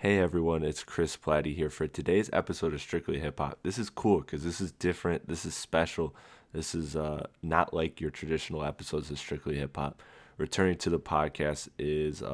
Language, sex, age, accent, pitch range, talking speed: English, male, 20-39, American, 75-85 Hz, 200 wpm